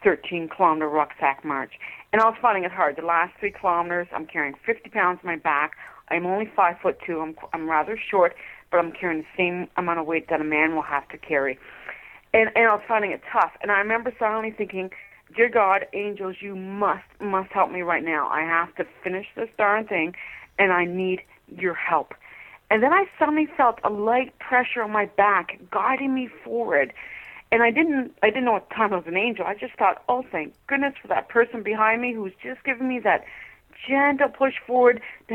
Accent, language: American, English